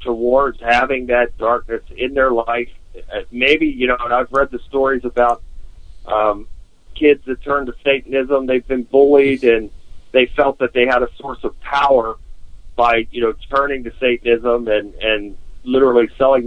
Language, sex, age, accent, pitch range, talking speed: English, male, 50-69, American, 105-130 Hz, 165 wpm